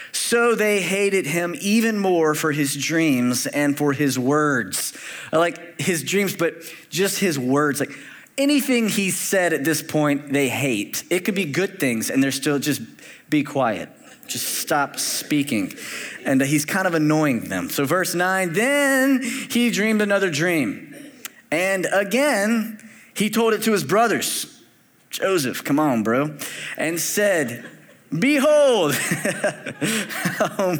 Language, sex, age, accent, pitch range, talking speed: English, male, 20-39, American, 140-200 Hz, 140 wpm